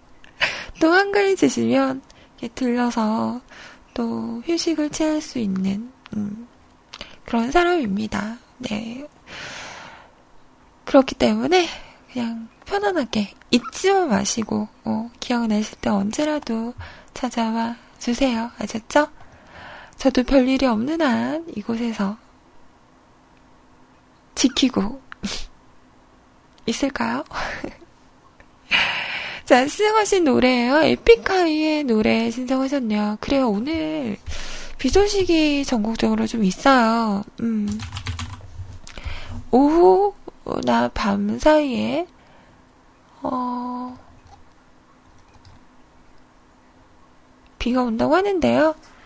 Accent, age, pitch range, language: native, 20-39, 215-290 Hz, Korean